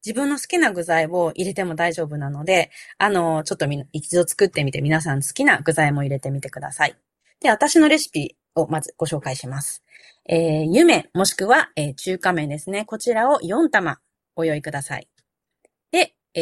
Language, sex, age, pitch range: Japanese, female, 20-39, 160-255 Hz